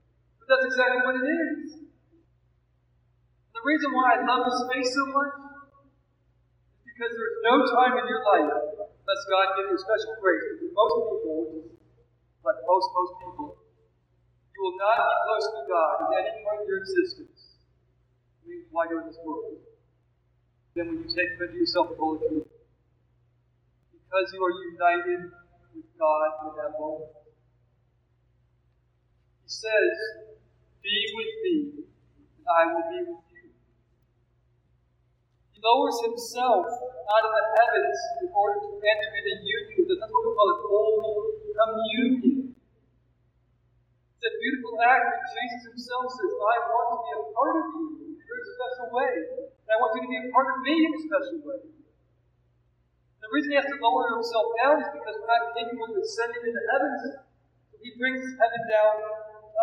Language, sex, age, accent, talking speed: English, male, 40-59, American, 165 wpm